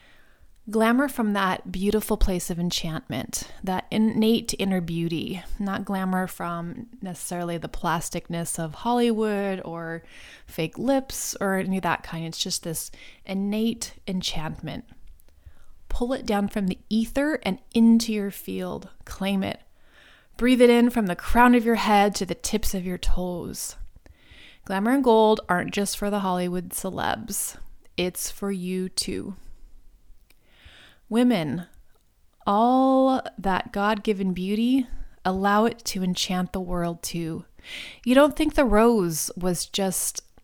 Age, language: 20-39, English